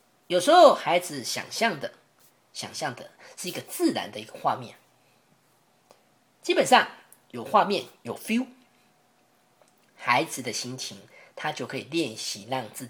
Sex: female